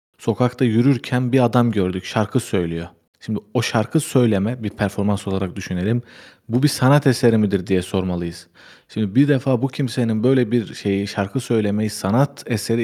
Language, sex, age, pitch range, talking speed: Turkish, male, 40-59, 105-125 Hz, 160 wpm